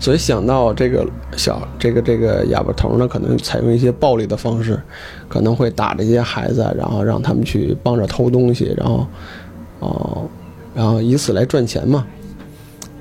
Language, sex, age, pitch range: Chinese, male, 20-39, 115-145 Hz